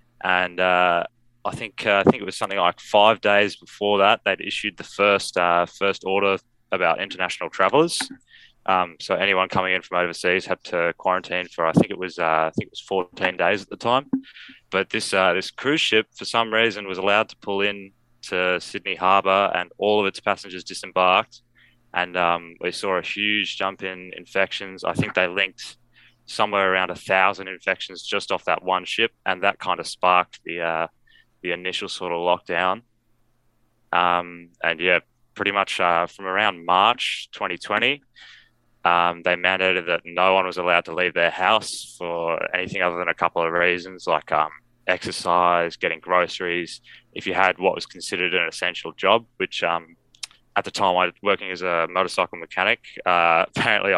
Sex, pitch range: male, 90-100 Hz